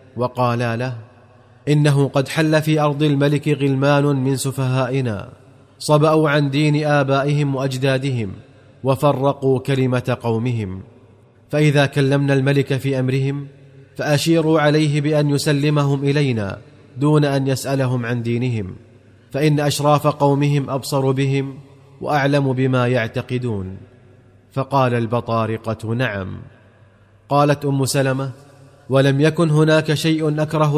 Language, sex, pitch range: Arabic, male, 125-145 Hz